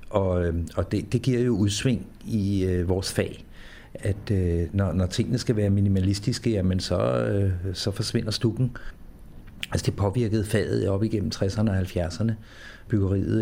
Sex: male